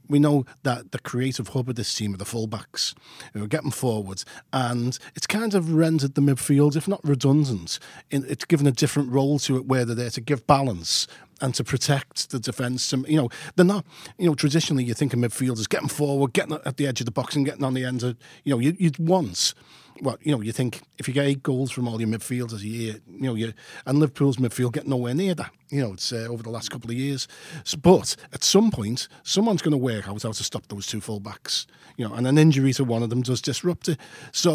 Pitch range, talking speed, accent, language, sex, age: 120-145 Hz, 245 wpm, British, English, male, 40-59